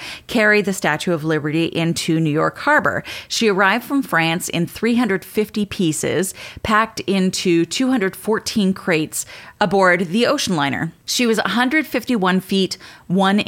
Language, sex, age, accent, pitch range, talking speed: English, female, 30-49, American, 170-225 Hz, 130 wpm